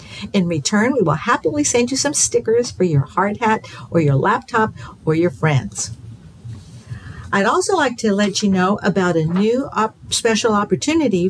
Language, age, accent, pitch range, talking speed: English, 50-69, American, 150-215 Hz, 170 wpm